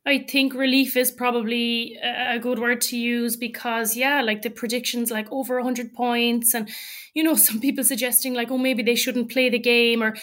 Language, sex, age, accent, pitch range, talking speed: English, female, 20-39, Irish, 235-265 Hz, 200 wpm